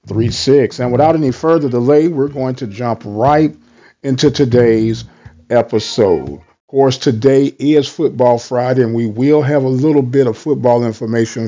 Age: 50-69